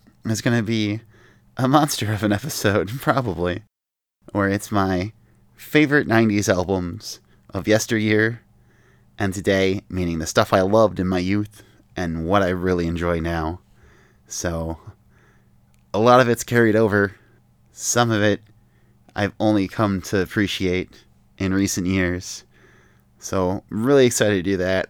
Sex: male